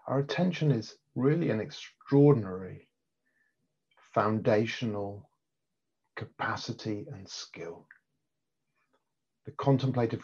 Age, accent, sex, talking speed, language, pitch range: 40-59, British, male, 70 wpm, English, 100-135 Hz